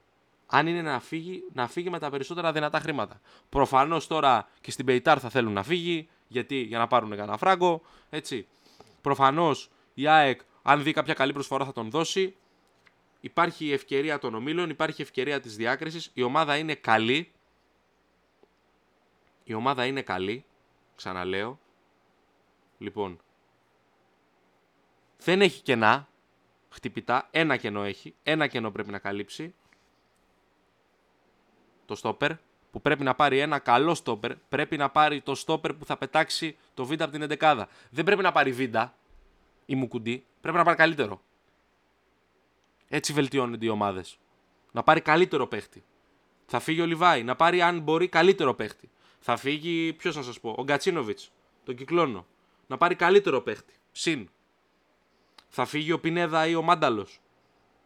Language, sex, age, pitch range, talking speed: Greek, male, 20-39, 120-160 Hz, 140 wpm